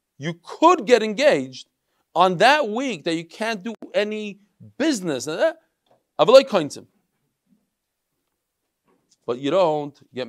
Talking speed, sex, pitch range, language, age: 110 wpm, male, 160-250 Hz, English, 40-59